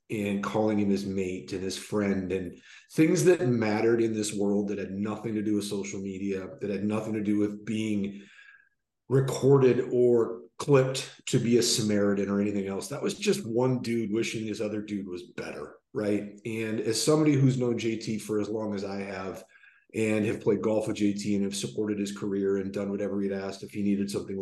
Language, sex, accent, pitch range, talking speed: English, male, American, 100-115 Hz, 205 wpm